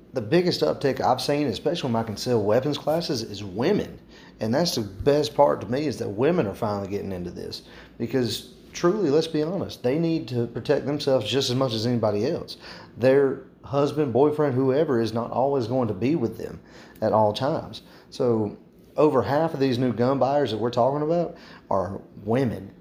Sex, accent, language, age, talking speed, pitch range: male, American, English, 30-49, 195 wpm, 110-130 Hz